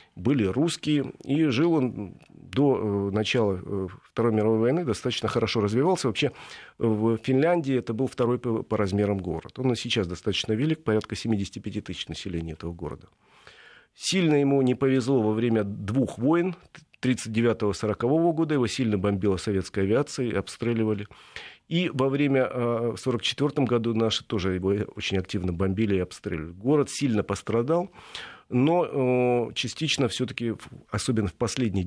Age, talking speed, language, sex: 40-59, 130 wpm, Russian, male